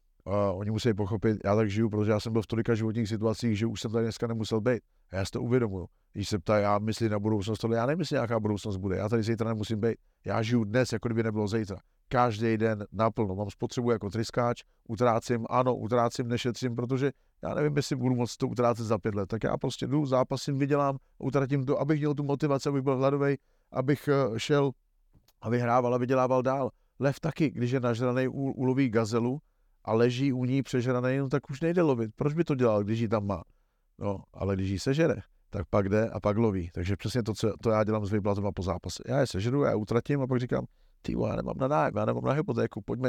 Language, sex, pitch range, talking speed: Slovak, male, 105-130 Hz, 230 wpm